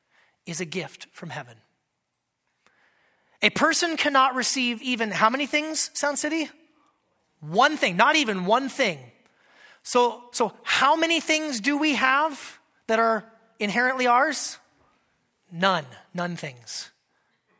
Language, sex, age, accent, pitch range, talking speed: English, male, 30-49, American, 190-270 Hz, 125 wpm